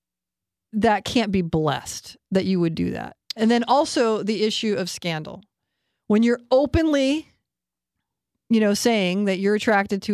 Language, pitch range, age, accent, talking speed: English, 180-225 Hz, 40-59, American, 155 wpm